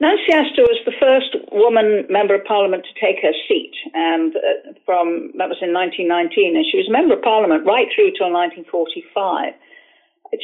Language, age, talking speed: English, 50-69, 165 wpm